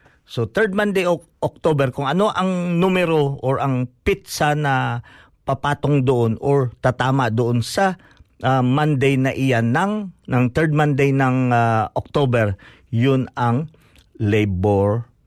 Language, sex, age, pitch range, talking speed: Filipino, male, 50-69, 110-150 Hz, 130 wpm